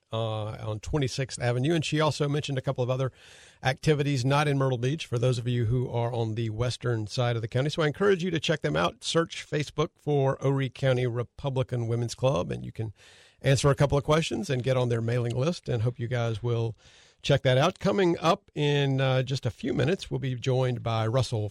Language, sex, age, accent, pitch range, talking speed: English, male, 50-69, American, 115-140 Hz, 225 wpm